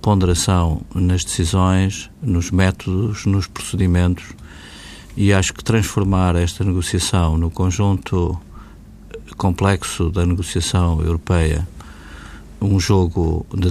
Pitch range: 85-105 Hz